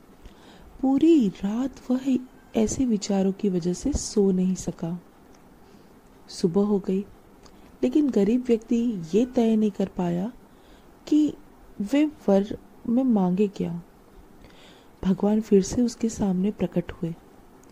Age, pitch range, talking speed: 30-49, 195-245 Hz, 120 wpm